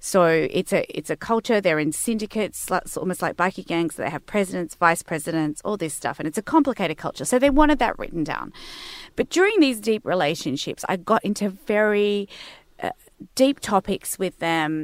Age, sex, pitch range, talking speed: 30-49, female, 165-225 Hz, 185 wpm